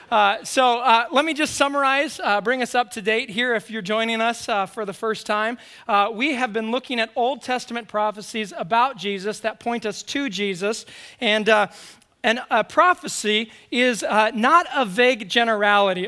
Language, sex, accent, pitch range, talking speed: English, male, American, 210-250 Hz, 185 wpm